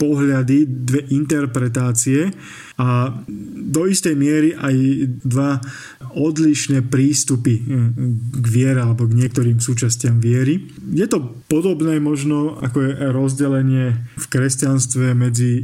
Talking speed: 105 wpm